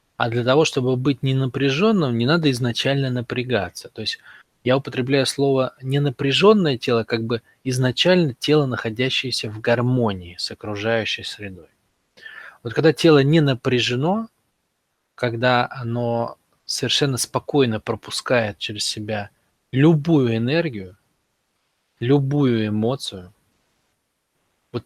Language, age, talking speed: Russian, 20-39, 105 wpm